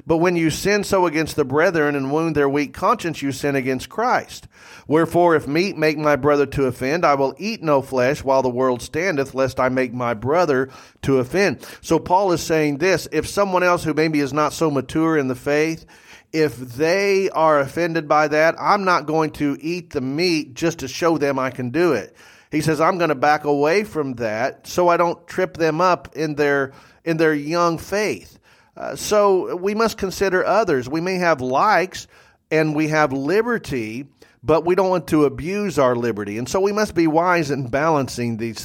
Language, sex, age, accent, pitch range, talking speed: English, male, 40-59, American, 135-170 Hz, 200 wpm